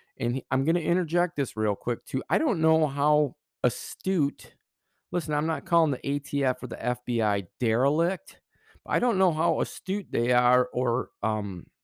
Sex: male